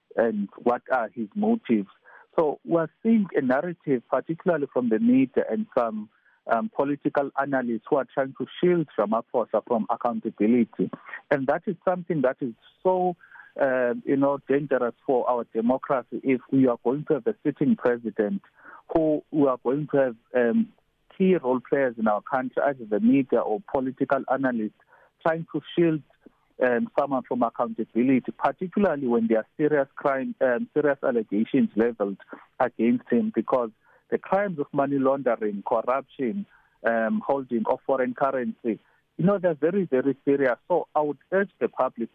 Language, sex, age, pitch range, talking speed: English, male, 50-69, 120-170 Hz, 160 wpm